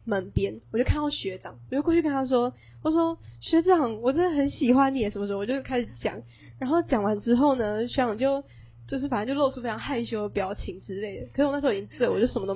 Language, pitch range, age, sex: Chinese, 185-255 Hz, 10-29, female